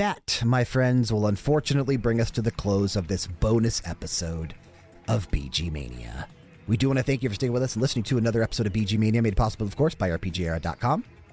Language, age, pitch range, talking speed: English, 30-49, 90-130 Hz, 215 wpm